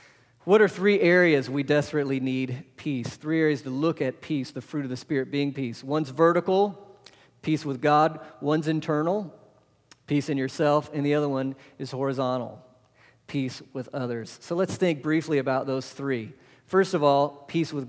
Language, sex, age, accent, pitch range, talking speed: English, male, 40-59, American, 135-170 Hz, 175 wpm